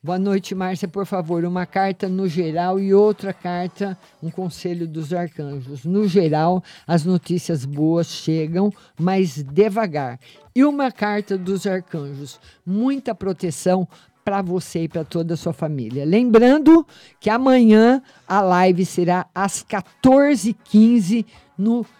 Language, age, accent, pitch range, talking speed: Portuguese, 50-69, Brazilian, 170-215 Hz, 130 wpm